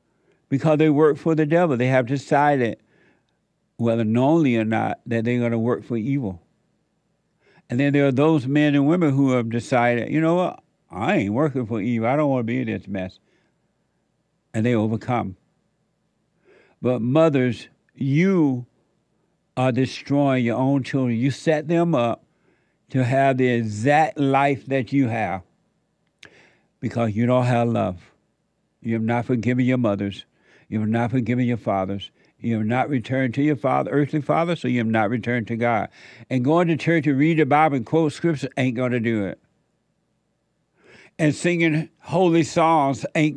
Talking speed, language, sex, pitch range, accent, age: 170 wpm, English, male, 120-155 Hz, American, 60-79